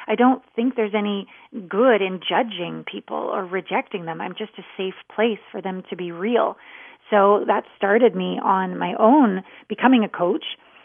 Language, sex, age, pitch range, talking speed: English, female, 30-49, 195-240 Hz, 175 wpm